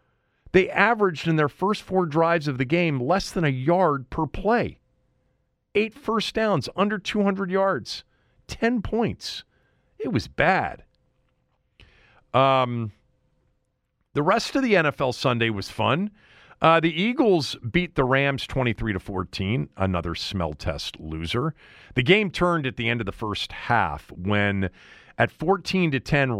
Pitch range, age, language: 100-155 Hz, 50-69, English